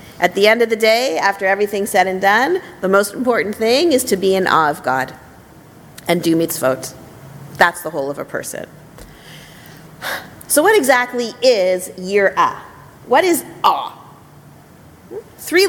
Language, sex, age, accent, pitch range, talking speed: English, female, 40-59, American, 175-235 Hz, 155 wpm